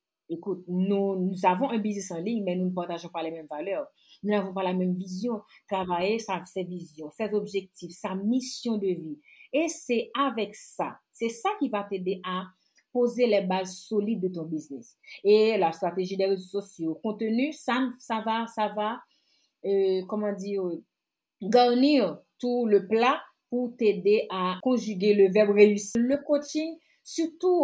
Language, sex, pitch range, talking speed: French, female, 200-295 Hz, 170 wpm